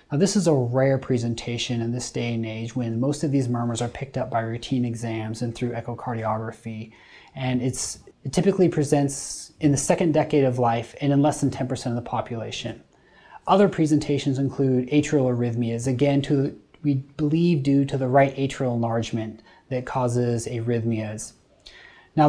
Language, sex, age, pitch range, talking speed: English, male, 30-49, 120-145 Hz, 165 wpm